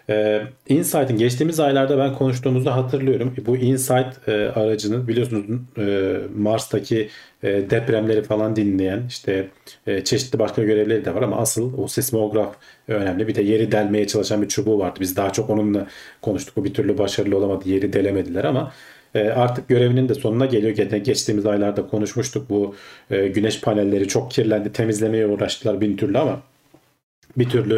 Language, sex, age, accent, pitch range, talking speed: Turkish, male, 40-59, native, 105-130 Hz, 160 wpm